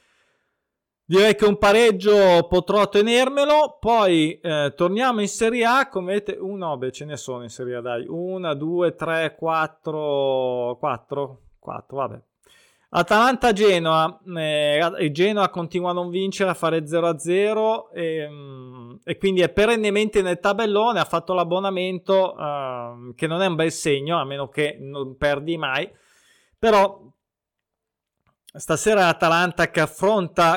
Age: 20-39